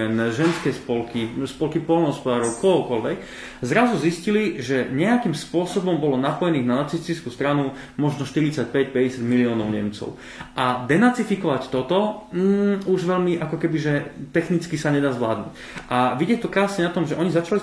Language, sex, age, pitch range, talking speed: Slovak, male, 20-39, 125-165 Hz, 140 wpm